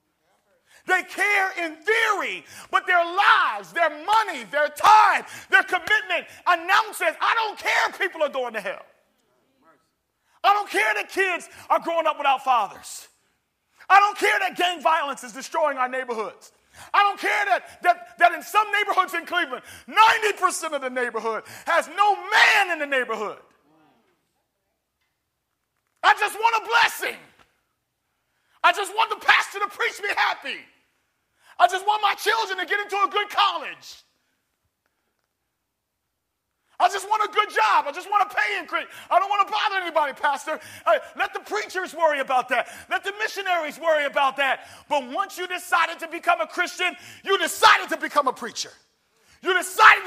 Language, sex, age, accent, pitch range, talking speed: English, male, 40-59, American, 320-405 Hz, 160 wpm